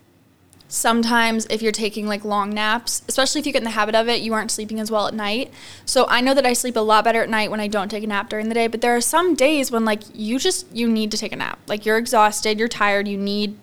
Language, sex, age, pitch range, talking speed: English, female, 10-29, 210-240 Hz, 285 wpm